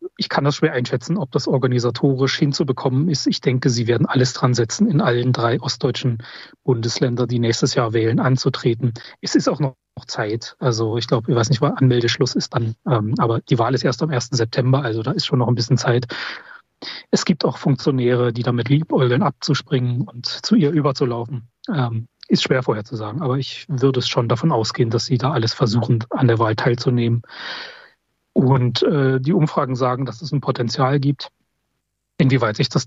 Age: 30-49